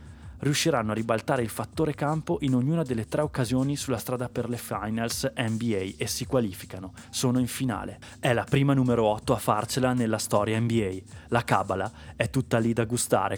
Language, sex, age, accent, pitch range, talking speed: Italian, male, 20-39, native, 105-125 Hz, 180 wpm